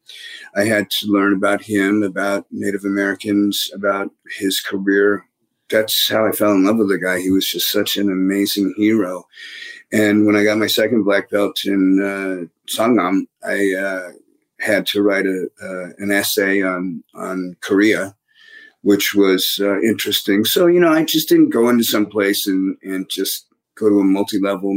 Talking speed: 175 wpm